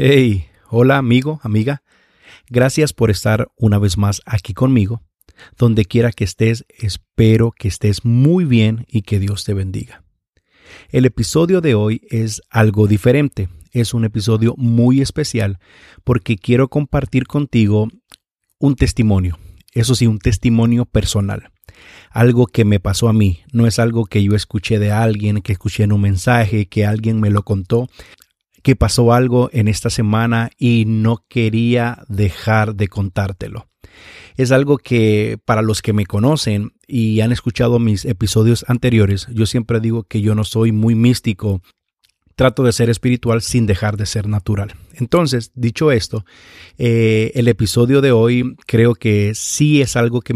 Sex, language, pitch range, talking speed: male, Spanish, 105-120 Hz, 155 wpm